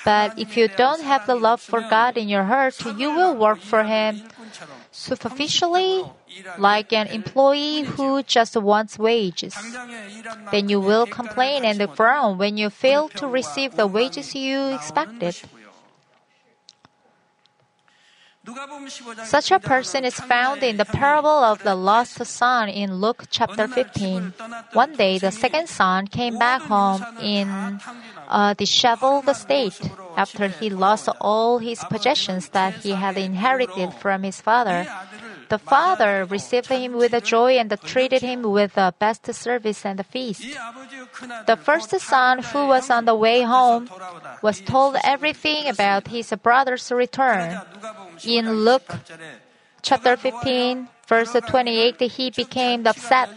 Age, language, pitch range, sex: 30-49, Korean, 210-255 Hz, female